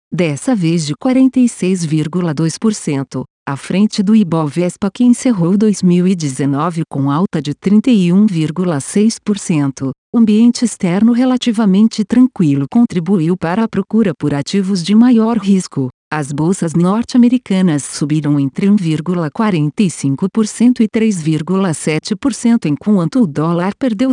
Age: 50-69